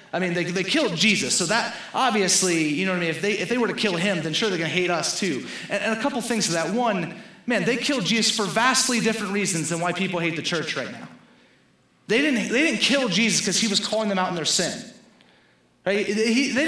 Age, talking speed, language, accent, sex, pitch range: 30-49, 260 wpm, English, American, male, 160-220 Hz